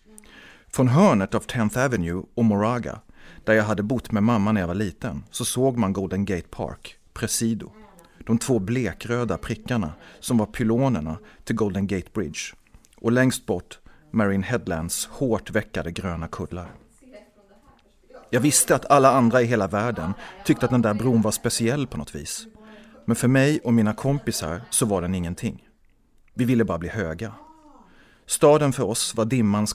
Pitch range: 95-125 Hz